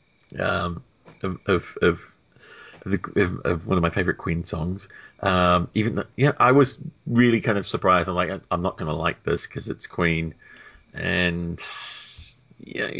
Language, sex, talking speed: English, male, 170 wpm